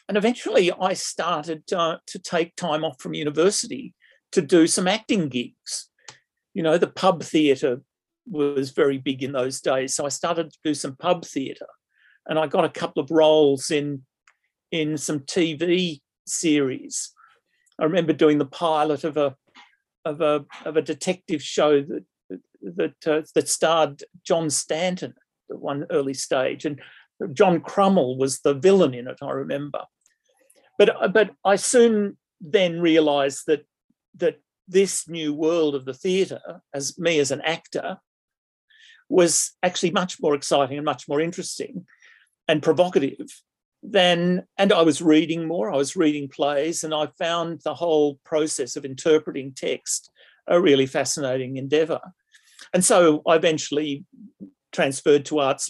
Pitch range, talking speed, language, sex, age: 145-180 Hz, 150 wpm, English, male, 50-69